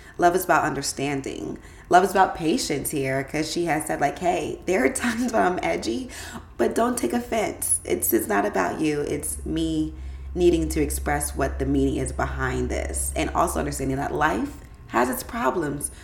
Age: 20-39